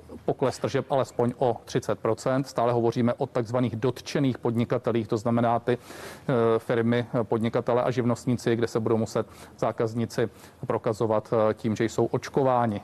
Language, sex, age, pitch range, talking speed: Czech, male, 40-59, 115-135 Hz, 130 wpm